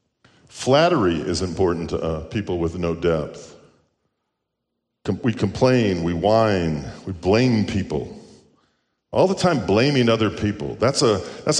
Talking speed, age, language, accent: 135 wpm, 50-69, English, American